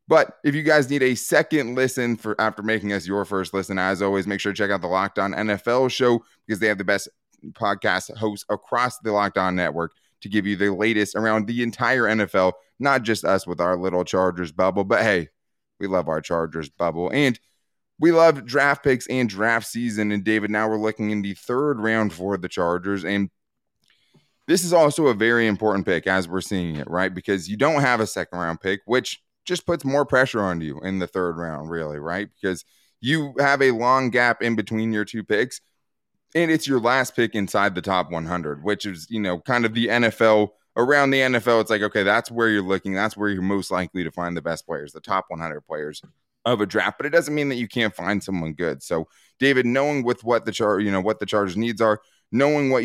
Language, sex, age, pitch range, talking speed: English, male, 20-39, 95-120 Hz, 225 wpm